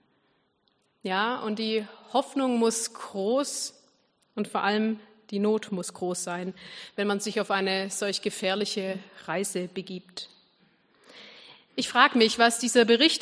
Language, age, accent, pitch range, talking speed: German, 30-49, German, 195-245 Hz, 130 wpm